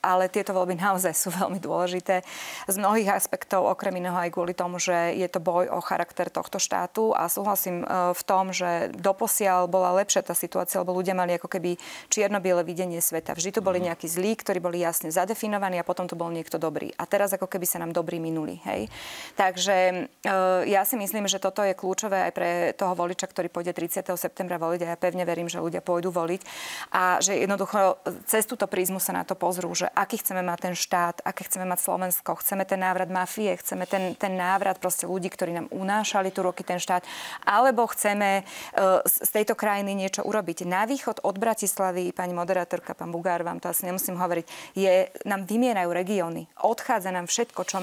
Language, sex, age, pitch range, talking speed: Slovak, female, 30-49, 180-200 Hz, 190 wpm